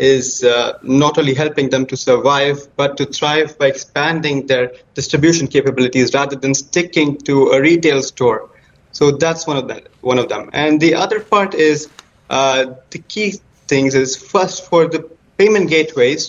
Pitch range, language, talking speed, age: 130-160 Hz, English, 170 wpm, 20-39